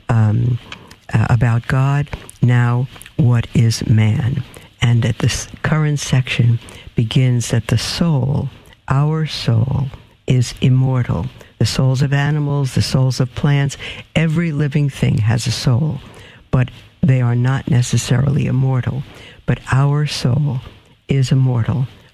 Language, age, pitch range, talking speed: English, 60-79, 120-145 Hz, 125 wpm